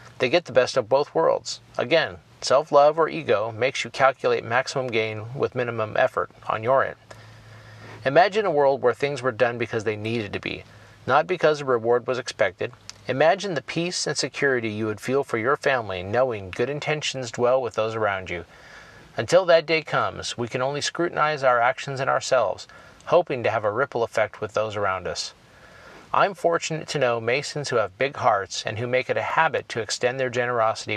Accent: American